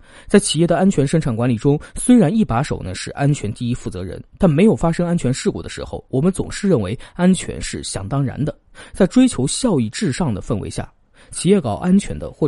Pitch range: 115-180 Hz